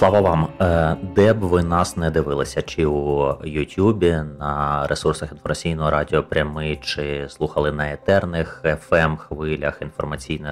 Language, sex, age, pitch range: Ukrainian, male, 30-49, 75-90 Hz